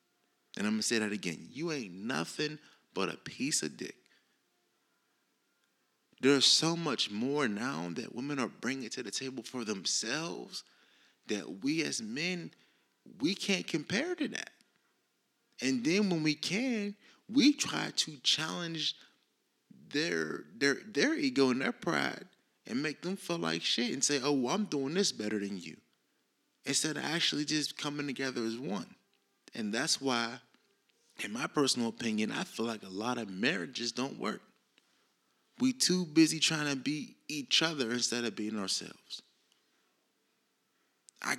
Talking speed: 155 wpm